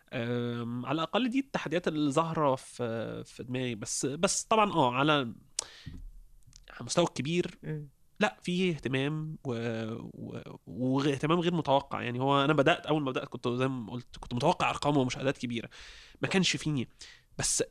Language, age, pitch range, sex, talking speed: Arabic, 20-39, 120-150 Hz, male, 145 wpm